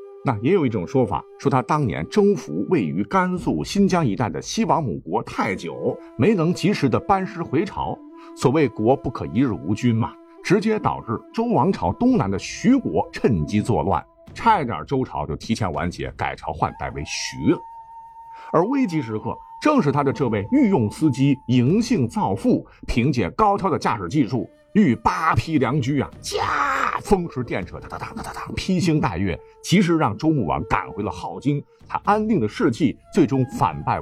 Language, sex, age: Chinese, male, 50-69